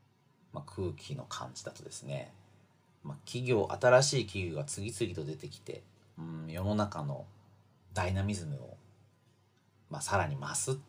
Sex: male